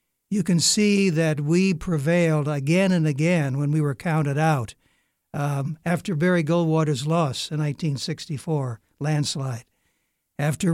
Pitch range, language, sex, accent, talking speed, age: 145-170 Hz, English, male, American, 130 wpm, 60-79